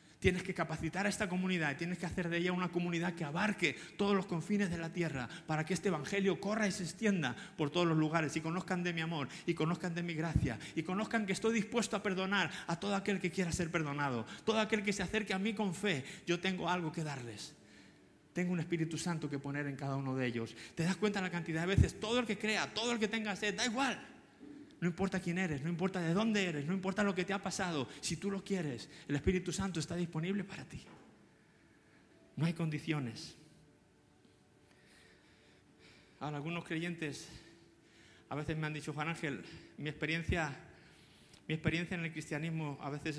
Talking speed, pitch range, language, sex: 205 wpm, 150-190 Hz, Spanish, male